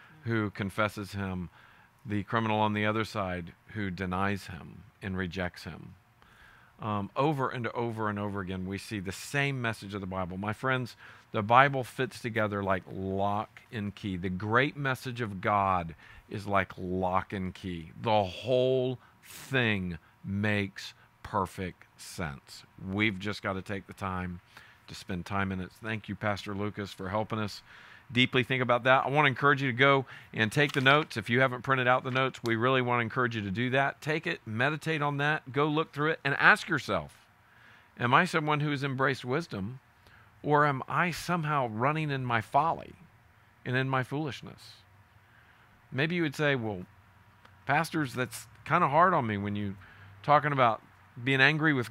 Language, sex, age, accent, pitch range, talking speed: English, male, 50-69, American, 100-135 Hz, 180 wpm